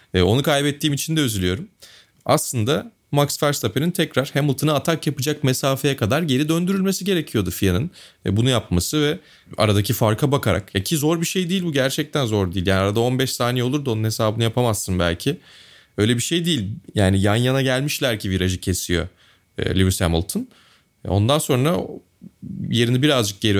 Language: Turkish